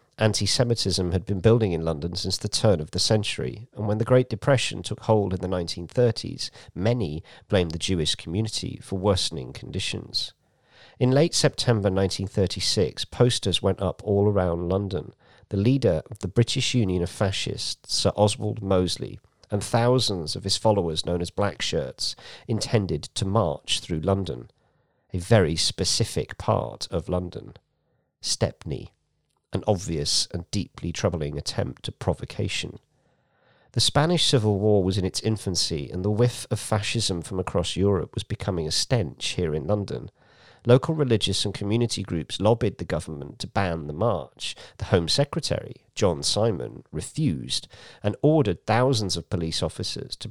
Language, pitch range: English, 90-115 Hz